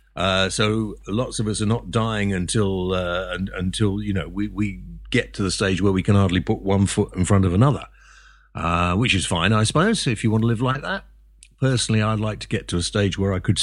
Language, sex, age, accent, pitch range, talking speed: English, male, 50-69, British, 95-120 Hz, 240 wpm